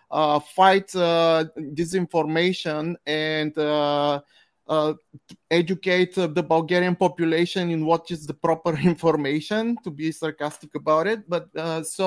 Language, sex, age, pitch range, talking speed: English, male, 30-49, 150-175 Hz, 130 wpm